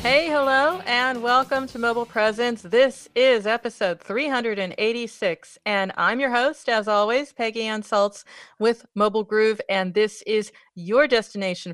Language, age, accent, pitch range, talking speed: English, 40-59, American, 195-245 Hz, 145 wpm